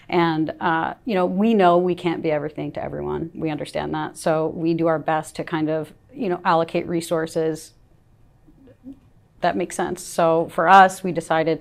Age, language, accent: 30-49, English, American